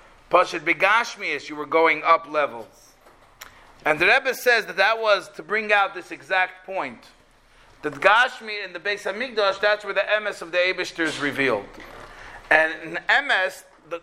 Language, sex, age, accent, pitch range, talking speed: English, male, 40-59, American, 155-210 Hz, 165 wpm